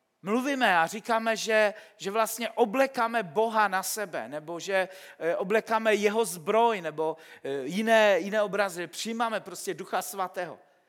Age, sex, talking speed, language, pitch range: 50-69, male, 125 wpm, Czech, 200-245 Hz